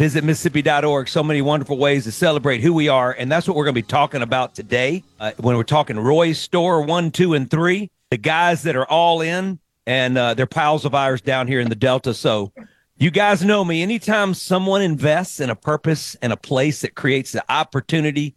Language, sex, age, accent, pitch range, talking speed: English, male, 50-69, American, 130-170 Hz, 215 wpm